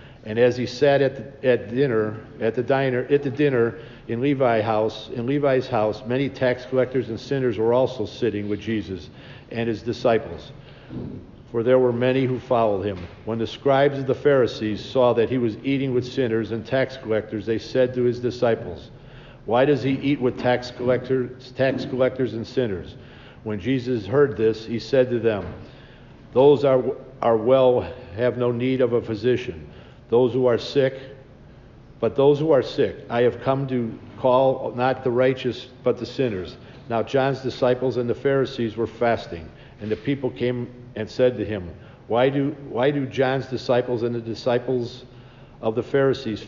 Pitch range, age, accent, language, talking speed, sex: 115-130 Hz, 50-69, American, English, 180 wpm, male